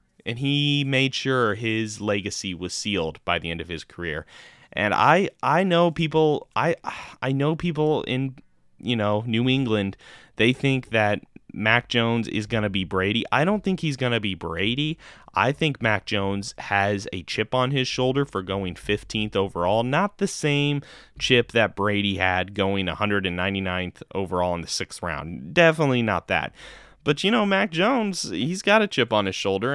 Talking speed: 180 wpm